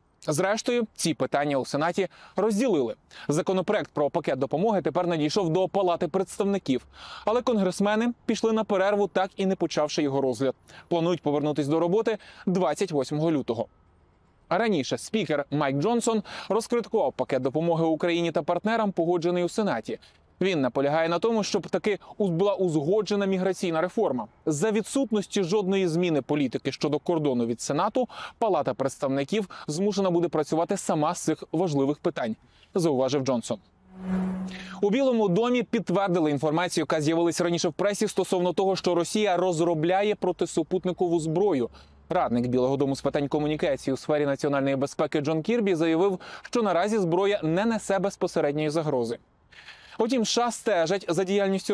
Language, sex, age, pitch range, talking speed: Ukrainian, male, 20-39, 155-200 Hz, 140 wpm